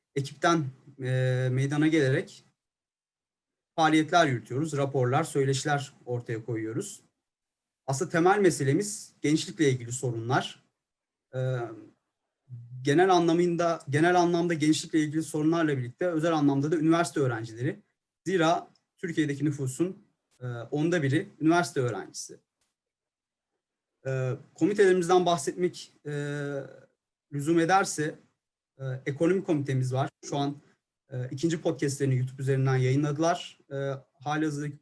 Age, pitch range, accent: 40-59, 130-165 Hz, native